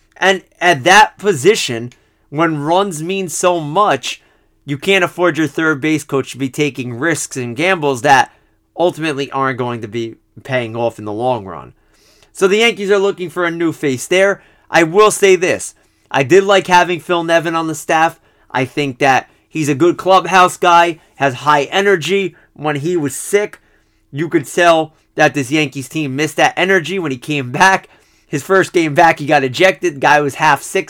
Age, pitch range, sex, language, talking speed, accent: 30-49, 140-180 Hz, male, English, 190 wpm, American